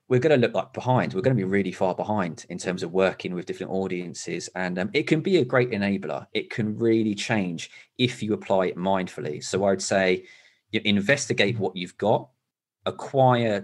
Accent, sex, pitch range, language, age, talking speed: British, male, 95-110 Hz, English, 30-49, 205 wpm